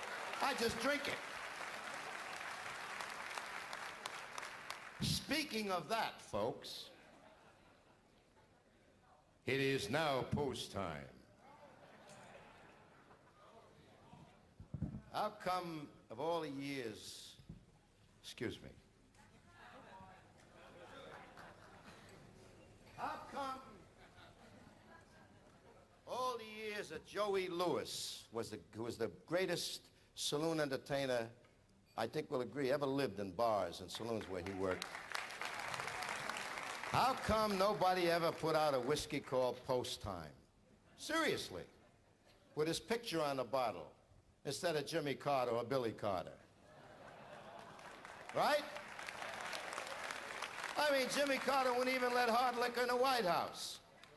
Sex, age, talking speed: male, 60-79, 100 wpm